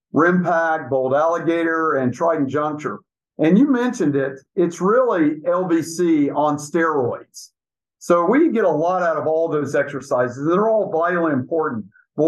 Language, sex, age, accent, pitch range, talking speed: English, male, 50-69, American, 150-200 Hz, 145 wpm